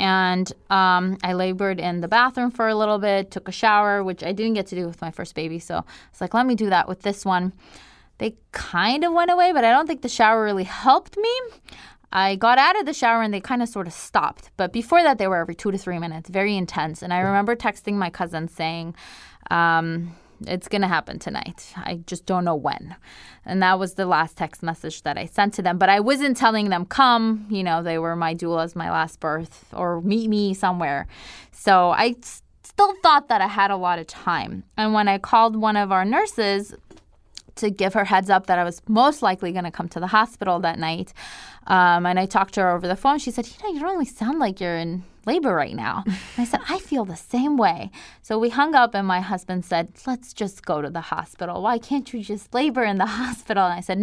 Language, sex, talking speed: English, female, 240 wpm